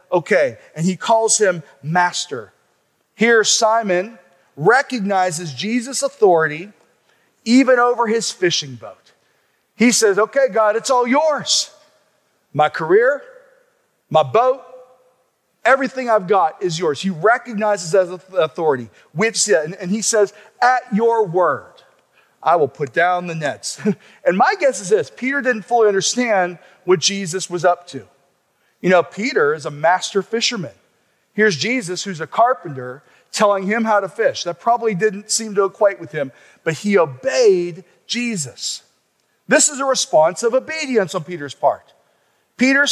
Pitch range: 180-235 Hz